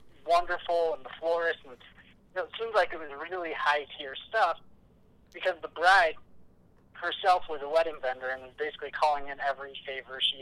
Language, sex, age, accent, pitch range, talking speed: English, male, 30-49, American, 135-170 Hz, 175 wpm